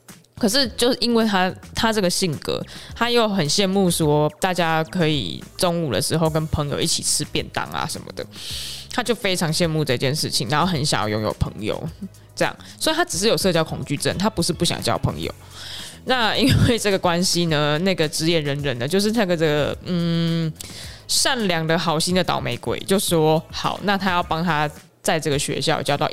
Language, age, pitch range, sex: Chinese, 20-39, 155-195 Hz, female